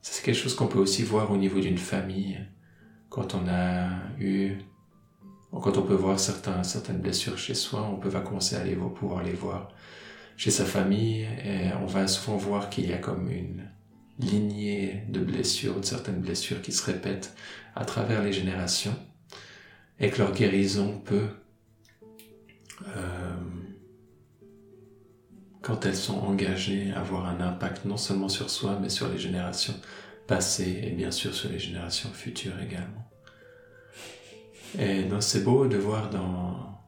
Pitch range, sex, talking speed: 95-110 Hz, male, 160 wpm